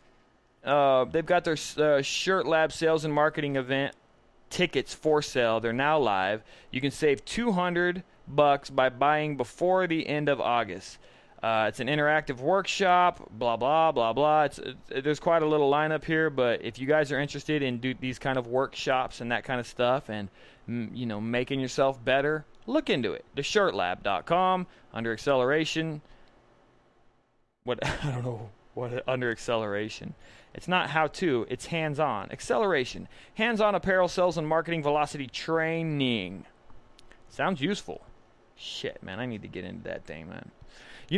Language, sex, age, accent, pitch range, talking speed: English, male, 30-49, American, 120-160 Hz, 160 wpm